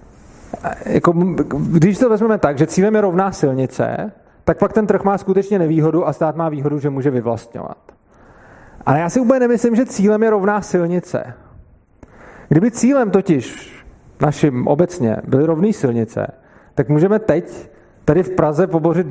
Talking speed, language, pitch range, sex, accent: 155 wpm, Czech, 145-185 Hz, male, native